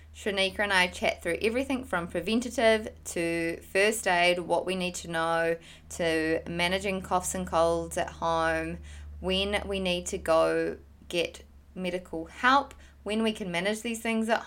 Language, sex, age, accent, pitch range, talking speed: English, female, 20-39, Australian, 165-195 Hz, 160 wpm